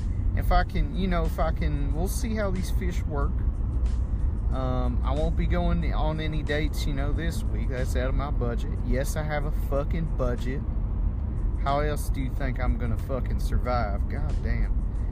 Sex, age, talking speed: male, 30-49, 190 wpm